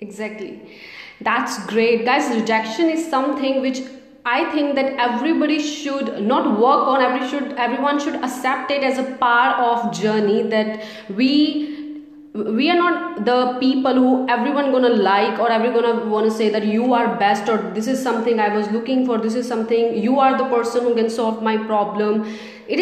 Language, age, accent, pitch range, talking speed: Hindi, 20-39, native, 220-275 Hz, 185 wpm